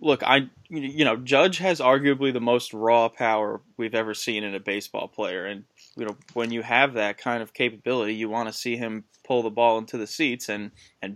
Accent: American